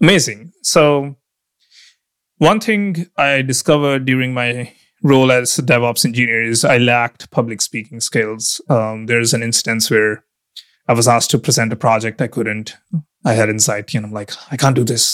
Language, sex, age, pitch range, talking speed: English, male, 30-49, 115-140 Hz, 170 wpm